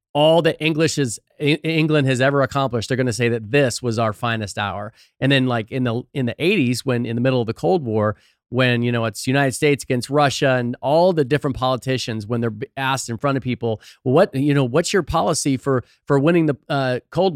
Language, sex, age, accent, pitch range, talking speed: English, male, 40-59, American, 120-155 Hz, 230 wpm